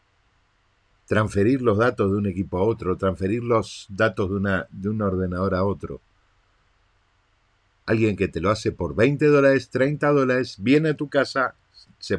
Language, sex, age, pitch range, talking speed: Spanish, male, 50-69, 95-115 Hz, 160 wpm